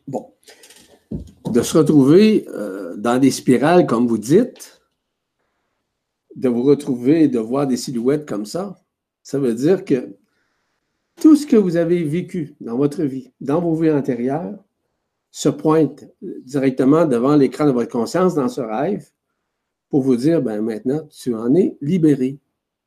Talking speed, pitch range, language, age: 150 wpm, 135-210 Hz, French, 60-79